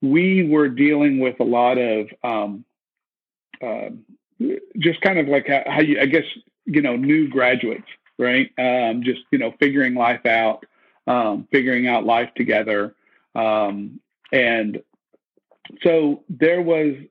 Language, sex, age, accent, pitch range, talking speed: English, male, 50-69, American, 120-145 Hz, 135 wpm